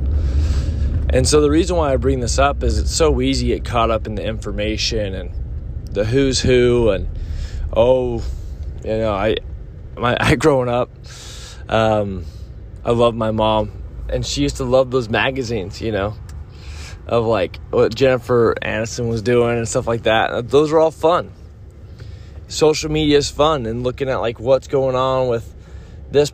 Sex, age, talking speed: male, 20-39, 170 wpm